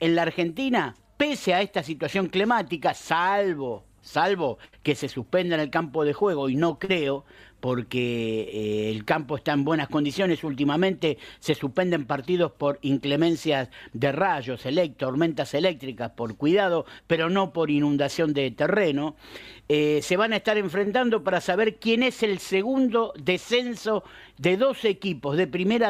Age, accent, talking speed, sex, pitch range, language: 50-69, Argentinian, 150 wpm, male, 140-200 Hz, Spanish